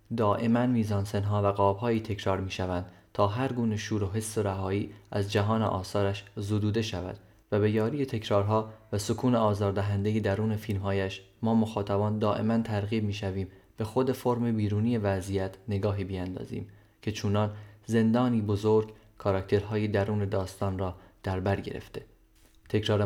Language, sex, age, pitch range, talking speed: Persian, male, 20-39, 100-110 Hz, 130 wpm